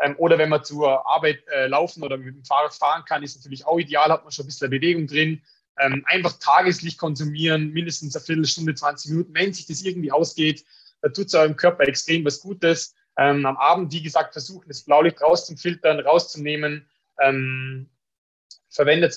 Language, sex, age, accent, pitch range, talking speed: German, male, 20-39, German, 140-170 Hz, 180 wpm